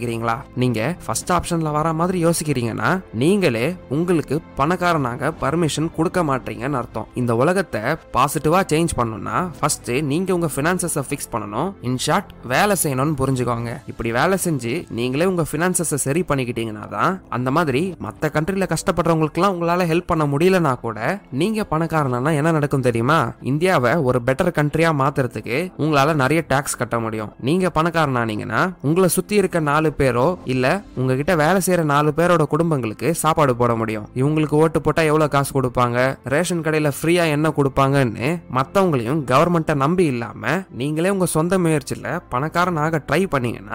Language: Tamil